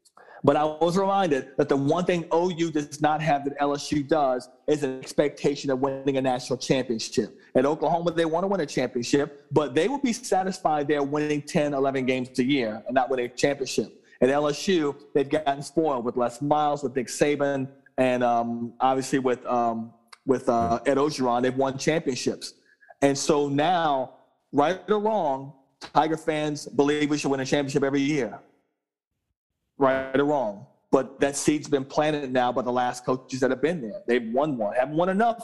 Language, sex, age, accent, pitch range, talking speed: English, male, 40-59, American, 130-150 Hz, 185 wpm